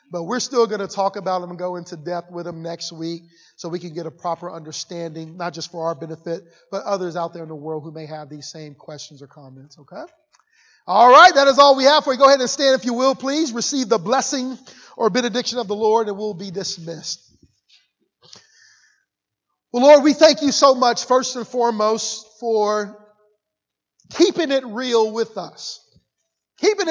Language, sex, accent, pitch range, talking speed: English, male, American, 185-260 Hz, 200 wpm